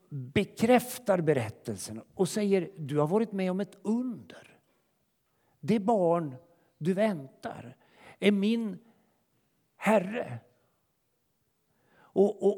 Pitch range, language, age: 130-185 Hz, Swedish, 50-69